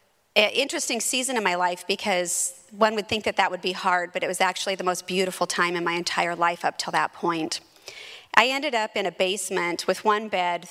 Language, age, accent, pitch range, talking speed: English, 30-49, American, 185-225 Hz, 220 wpm